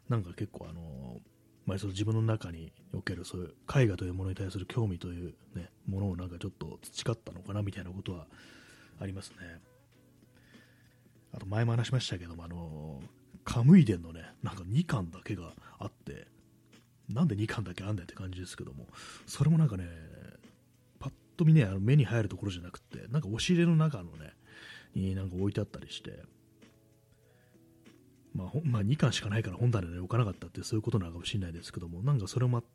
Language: Japanese